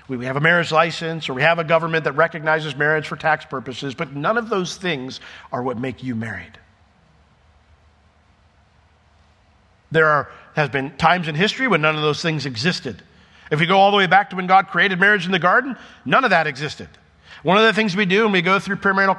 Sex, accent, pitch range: male, American, 115-180 Hz